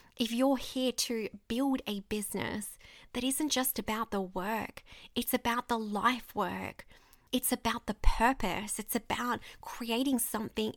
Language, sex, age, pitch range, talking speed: English, female, 20-39, 205-260 Hz, 145 wpm